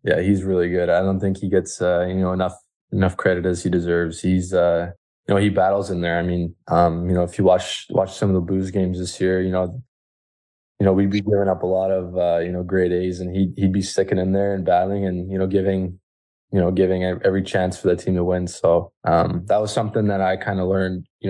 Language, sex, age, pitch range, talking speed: English, male, 20-39, 90-95 Hz, 245 wpm